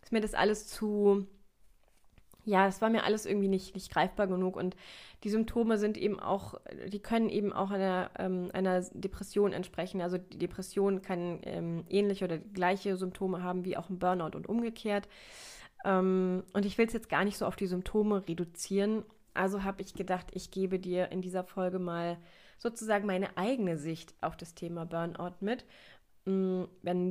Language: German